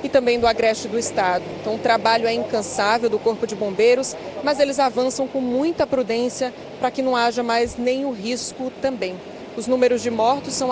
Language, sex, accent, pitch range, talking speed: Portuguese, female, Brazilian, 225-260 Hz, 190 wpm